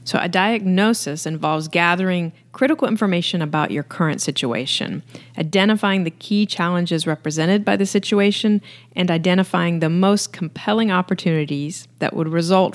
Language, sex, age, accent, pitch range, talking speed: English, female, 30-49, American, 155-200 Hz, 130 wpm